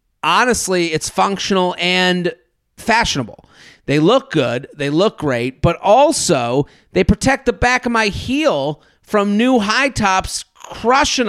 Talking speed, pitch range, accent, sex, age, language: 135 wpm, 155-220 Hz, American, male, 30-49, English